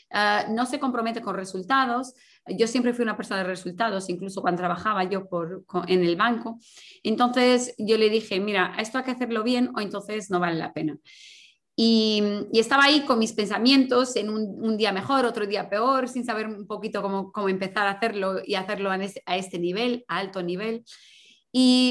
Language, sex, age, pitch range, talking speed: Spanish, female, 20-39, 200-245 Hz, 200 wpm